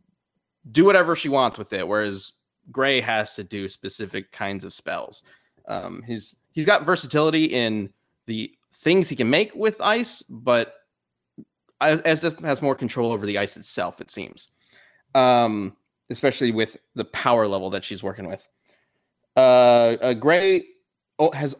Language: English